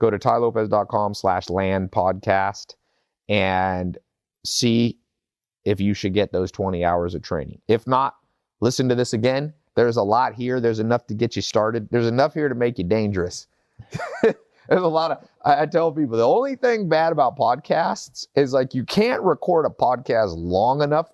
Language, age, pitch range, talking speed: English, 30-49, 95-120 Hz, 180 wpm